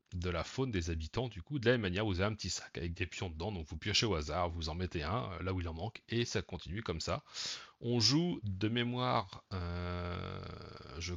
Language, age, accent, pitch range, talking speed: French, 30-49, French, 90-115 Hz, 240 wpm